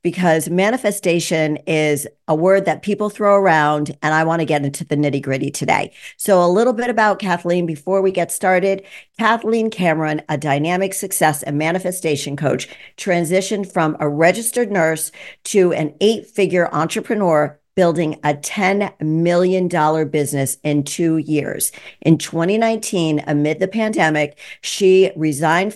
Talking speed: 140 wpm